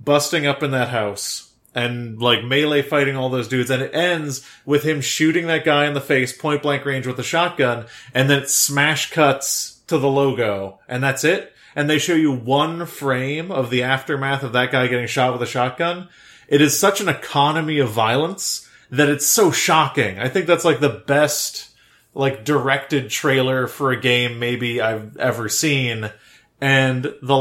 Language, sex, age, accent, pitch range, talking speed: English, male, 30-49, American, 130-155 Hz, 190 wpm